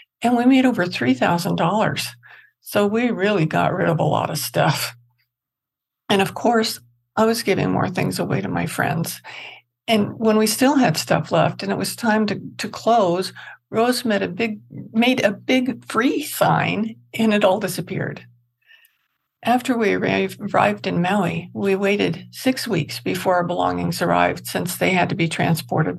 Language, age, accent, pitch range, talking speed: English, 60-79, American, 165-225 Hz, 160 wpm